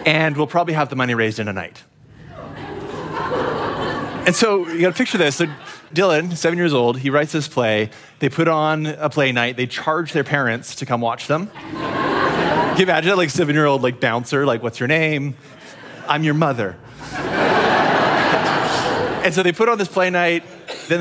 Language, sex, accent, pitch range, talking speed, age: English, male, American, 120-155 Hz, 185 wpm, 30-49